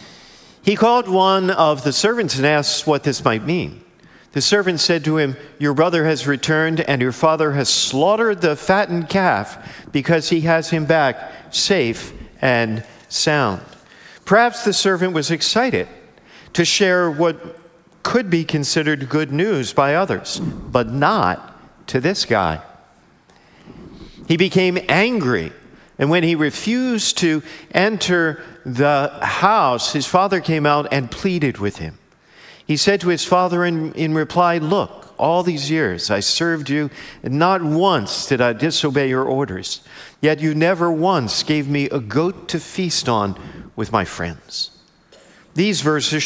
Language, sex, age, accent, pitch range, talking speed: English, male, 50-69, American, 145-180 Hz, 150 wpm